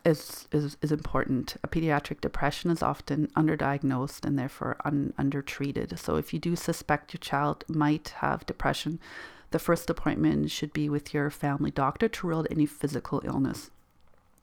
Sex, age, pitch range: female, 40-59, 145-175 Hz